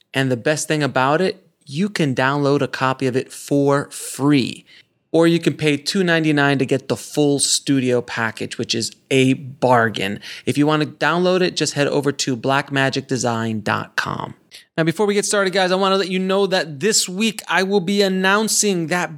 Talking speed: 190 wpm